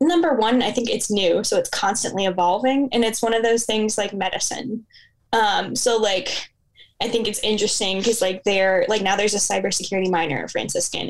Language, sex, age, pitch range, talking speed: English, female, 10-29, 185-240 Hz, 195 wpm